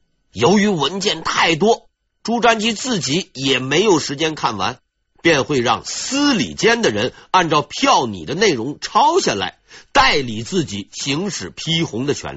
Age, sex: 50-69, male